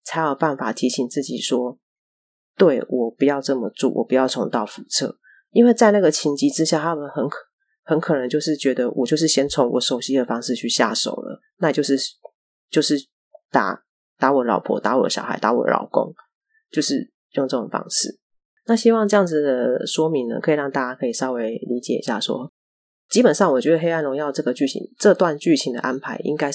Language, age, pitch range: Chinese, 30-49, 130-170 Hz